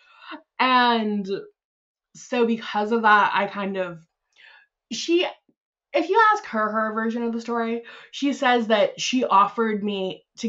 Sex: female